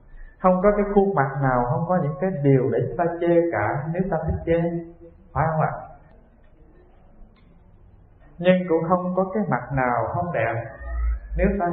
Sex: male